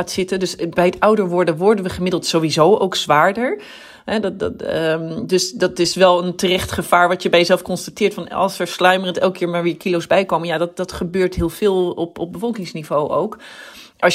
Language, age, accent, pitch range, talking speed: Dutch, 40-59, Dutch, 160-195 Hz, 210 wpm